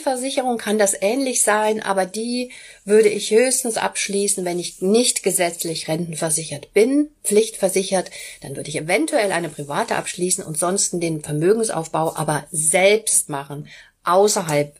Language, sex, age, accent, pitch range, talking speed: German, female, 40-59, German, 185-255 Hz, 135 wpm